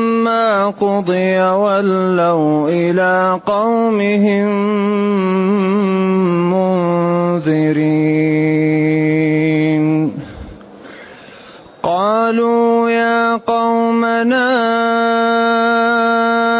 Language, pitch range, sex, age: Arabic, 185-230 Hz, male, 30-49